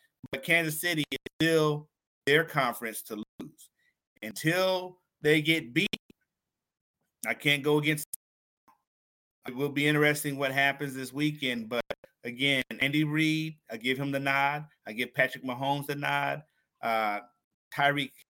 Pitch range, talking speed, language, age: 130-160 Hz, 135 wpm, English, 30-49